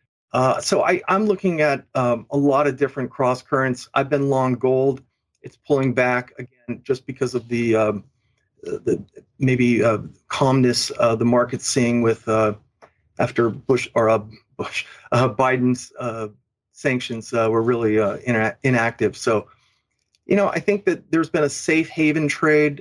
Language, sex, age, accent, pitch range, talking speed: English, male, 40-59, American, 120-140 Hz, 160 wpm